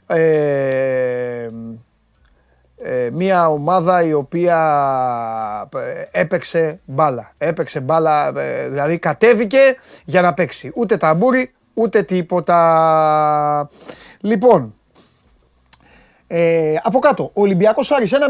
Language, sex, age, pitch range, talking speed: Greek, male, 30-49, 145-230 Hz, 80 wpm